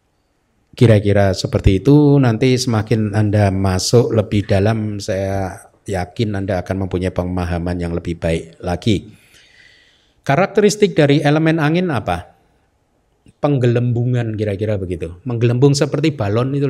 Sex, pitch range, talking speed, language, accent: male, 105-140 Hz, 110 wpm, Indonesian, native